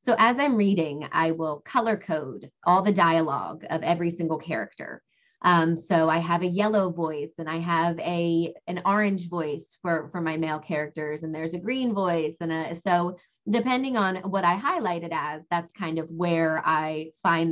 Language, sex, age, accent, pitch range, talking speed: English, female, 20-39, American, 165-195 Hz, 190 wpm